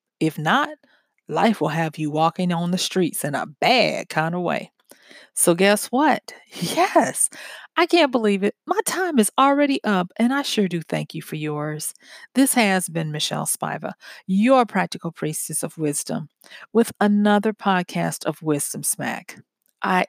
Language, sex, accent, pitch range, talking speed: English, female, American, 170-230 Hz, 160 wpm